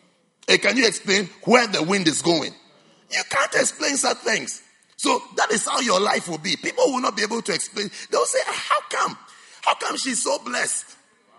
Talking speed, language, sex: 200 wpm, English, male